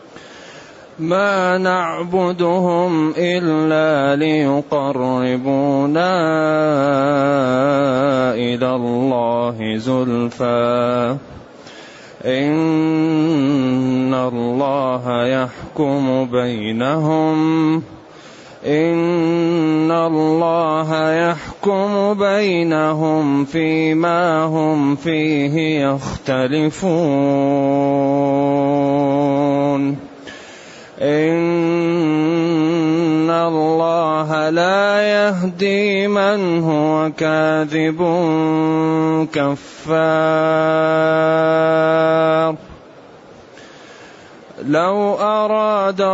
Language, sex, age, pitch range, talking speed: Arabic, male, 30-49, 140-165 Hz, 40 wpm